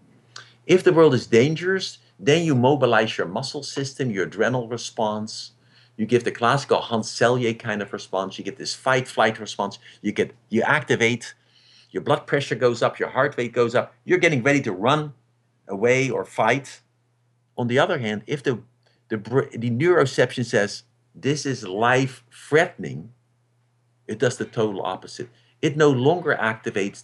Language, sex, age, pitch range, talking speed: English, male, 50-69, 115-130 Hz, 155 wpm